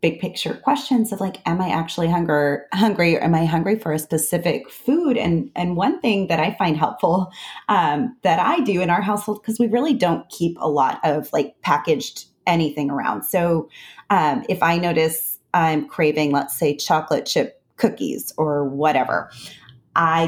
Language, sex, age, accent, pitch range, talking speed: English, female, 30-49, American, 155-200 Hz, 175 wpm